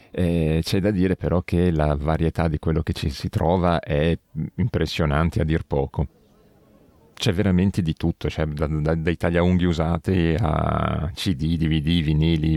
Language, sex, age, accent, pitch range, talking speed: Italian, male, 40-59, native, 80-95 Hz, 160 wpm